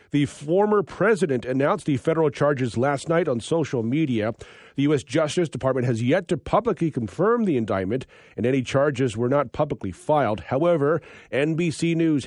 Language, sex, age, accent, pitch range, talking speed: English, male, 40-59, American, 125-165 Hz, 160 wpm